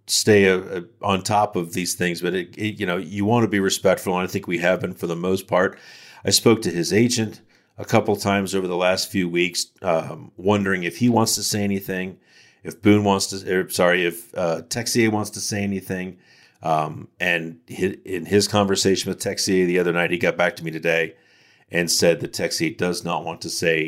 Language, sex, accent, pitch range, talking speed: English, male, American, 85-105 Hz, 215 wpm